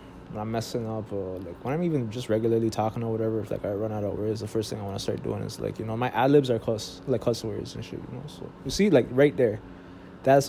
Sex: male